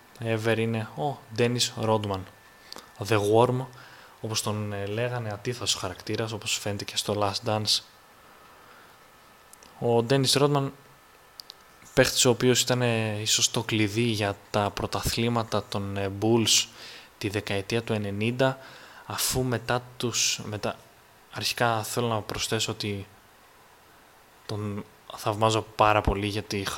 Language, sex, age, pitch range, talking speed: Greek, male, 20-39, 105-115 Hz, 120 wpm